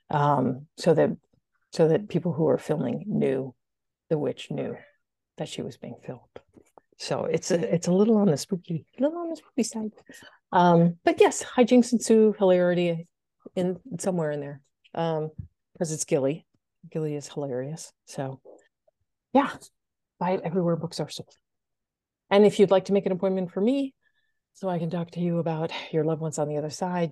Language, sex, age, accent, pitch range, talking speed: English, female, 50-69, American, 150-190 Hz, 180 wpm